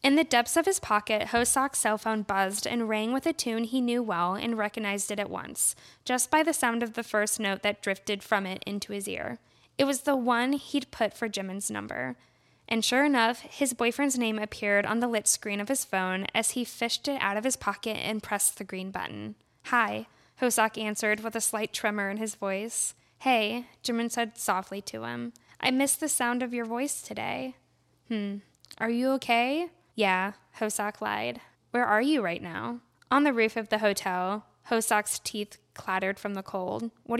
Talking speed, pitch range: 200 wpm, 200-245 Hz